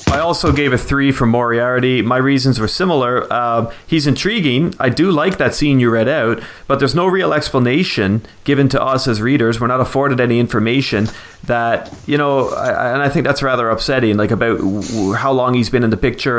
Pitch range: 115-145 Hz